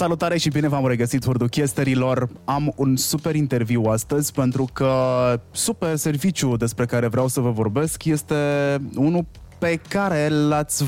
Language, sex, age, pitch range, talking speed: Romanian, male, 20-39, 105-135 Hz, 150 wpm